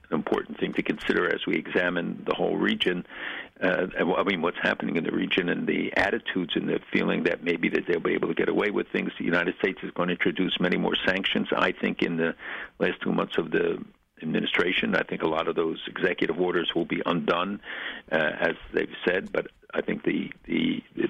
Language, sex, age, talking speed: English, male, 50-69, 215 wpm